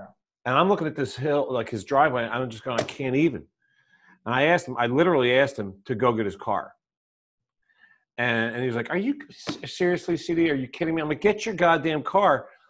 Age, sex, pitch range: 40-59, male, 110-150 Hz